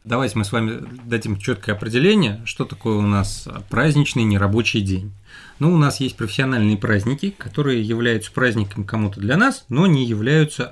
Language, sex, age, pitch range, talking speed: Russian, male, 30-49, 105-145 Hz, 160 wpm